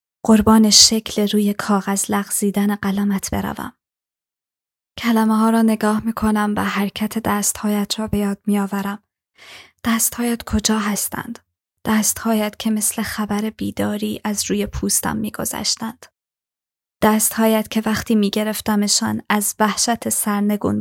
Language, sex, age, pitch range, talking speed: Persian, female, 20-39, 200-220 Hz, 110 wpm